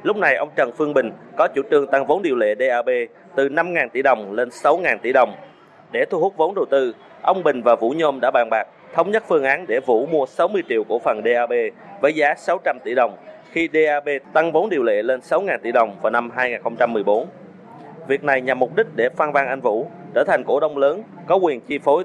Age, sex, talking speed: 20-39, male, 230 wpm